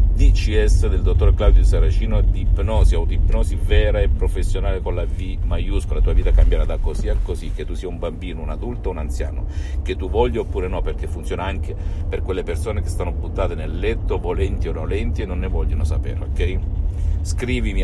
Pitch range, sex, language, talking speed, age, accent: 80-100 Hz, male, Italian, 205 wpm, 50-69, native